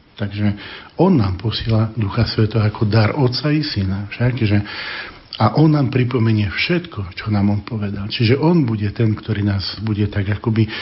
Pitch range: 105-120 Hz